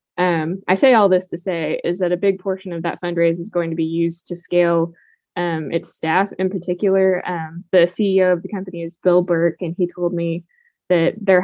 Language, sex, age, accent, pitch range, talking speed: English, female, 10-29, American, 170-185 Hz, 220 wpm